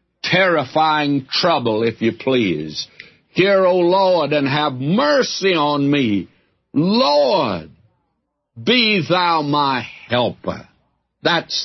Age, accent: 60-79, American